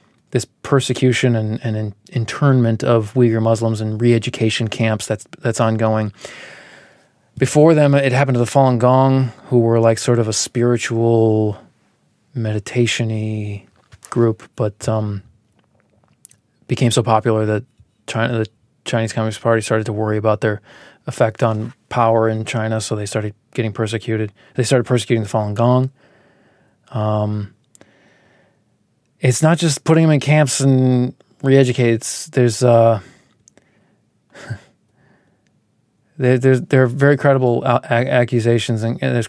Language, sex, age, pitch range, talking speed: English, male, 20-39, 110-125 Hz, 130 wpm